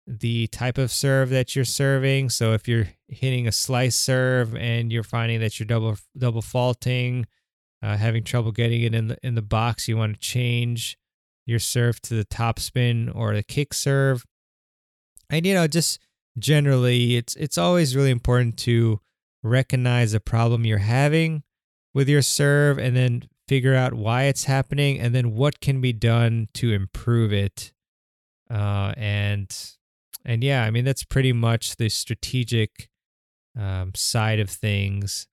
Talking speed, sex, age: 165 wpm, male, 20-39